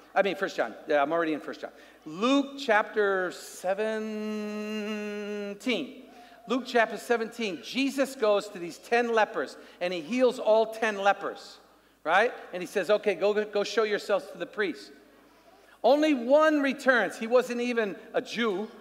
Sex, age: male, 50-69